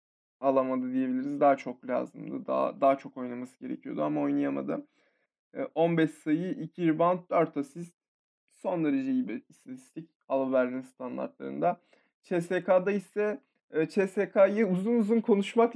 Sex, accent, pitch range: male, native, 155-230 Hz